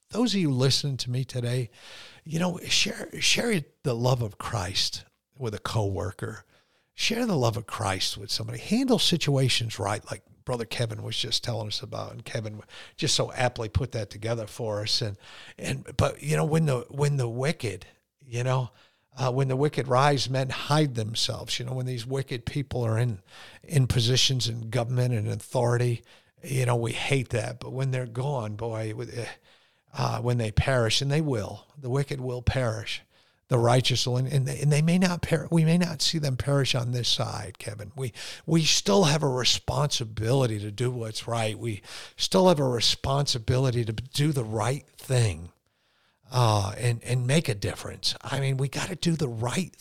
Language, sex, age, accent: English, male, 50-69, American